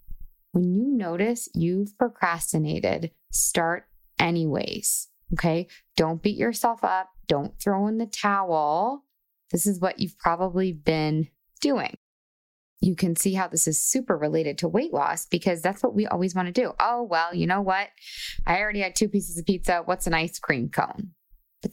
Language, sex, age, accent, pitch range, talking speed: English, female, 20-39, American, 160-195 Hz, 165 wpm